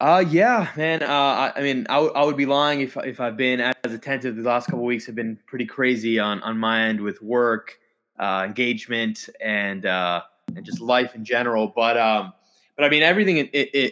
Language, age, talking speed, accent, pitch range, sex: English, 20-39, 215 wpm, American, 110-130 Hz, male